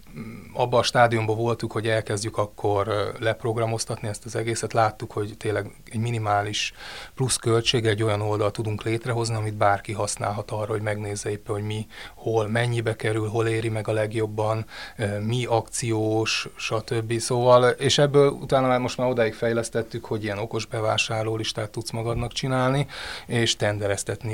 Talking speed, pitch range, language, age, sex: 150 wpm, 105-120 Hz, Hungarian, 20-39, male